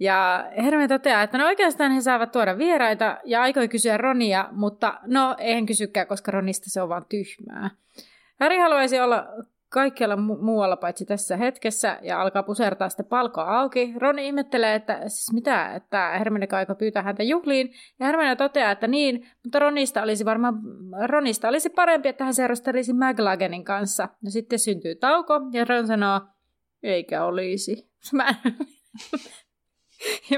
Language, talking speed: Finnish, 150 wpm